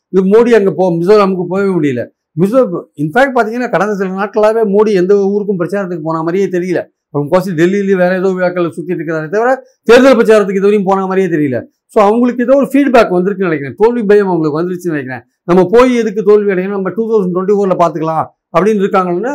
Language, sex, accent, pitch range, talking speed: Tamil, male, native, 175-220 Hz, 185 wpm